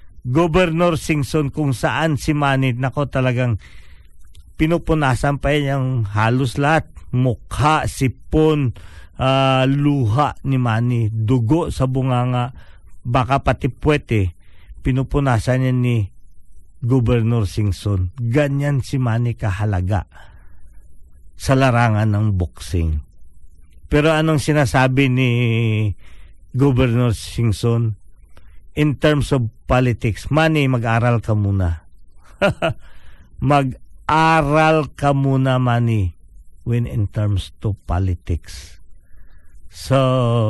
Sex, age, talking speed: male, 50-69, 95 wpm